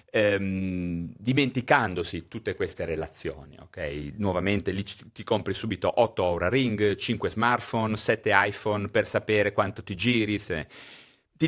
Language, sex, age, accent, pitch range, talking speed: Italian, male, 40-59, native, 95-130 Hz, 130 wpm